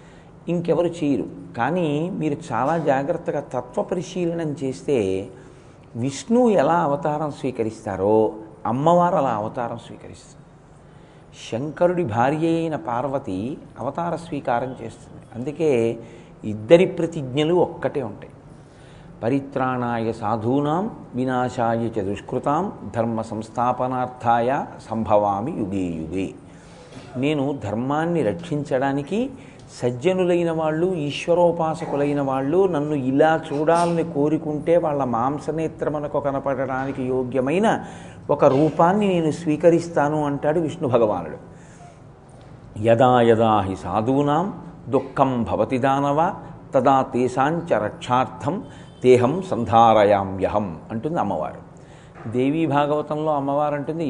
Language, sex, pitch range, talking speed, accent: Telugu, male, 120-160 Hz, 85 wpm, native